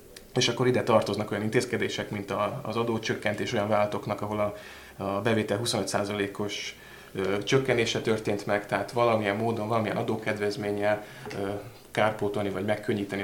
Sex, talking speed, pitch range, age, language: male, 120 wpm, 100-115 Hz, 20-39, Hungarian